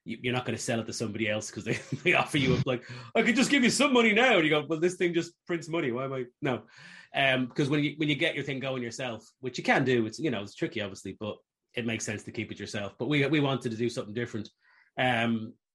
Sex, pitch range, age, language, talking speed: male, 105-130 Hz, 30-49, English, 285 wpm